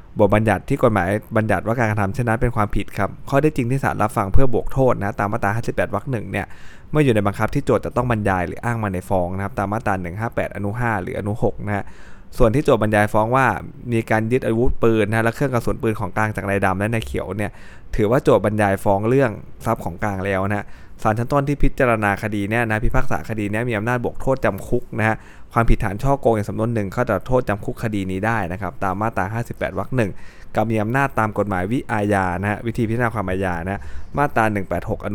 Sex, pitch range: male, 100-115 Hz